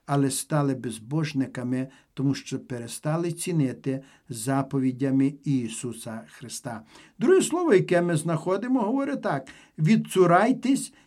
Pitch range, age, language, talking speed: 150-225 Hz, 50-69, Ukrainian, 100 wpm